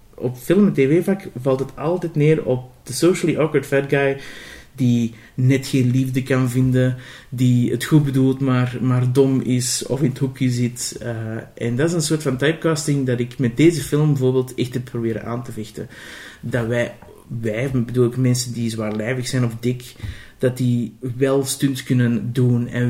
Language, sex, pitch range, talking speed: Dutch, male, 120-140 Hz, 190 wpm